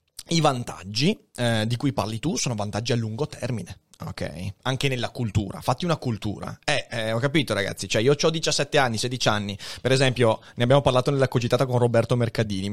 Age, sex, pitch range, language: 30-49, male, 110-135 Hz, Italian